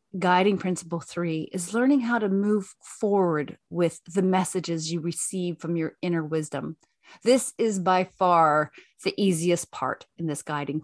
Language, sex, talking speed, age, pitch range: English, female, 155 wpm, 30-49, 165-210 Hz